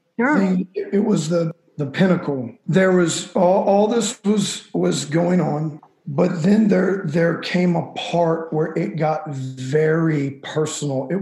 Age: 50-69